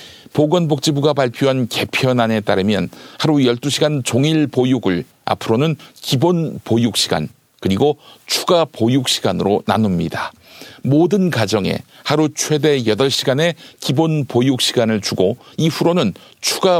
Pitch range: 120-155 Hz